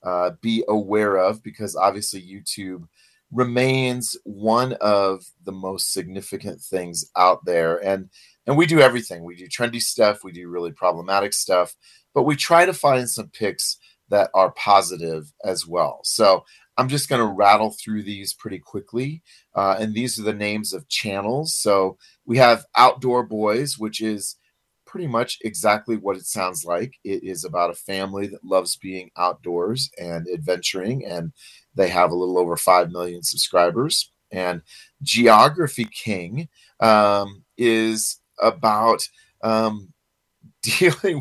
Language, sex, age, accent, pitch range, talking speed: English, male, 30-49, American, 90-115 Hz, 150 wpm